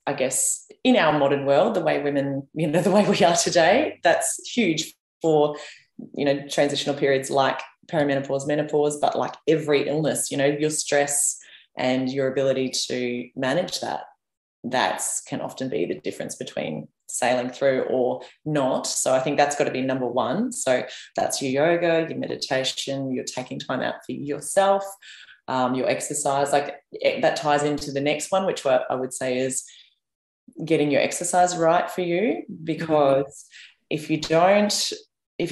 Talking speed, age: 165 wpm, 20-39